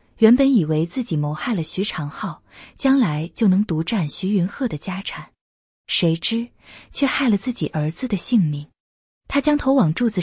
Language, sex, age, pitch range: Chinese, female, 20-39, 155-240 Hz